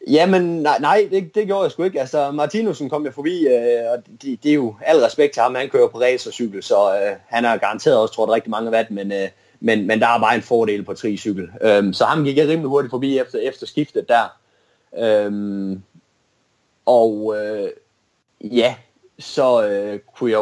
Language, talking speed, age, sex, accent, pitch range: Danish, 210 wpm, 30-49, male, native, 105-155 Hz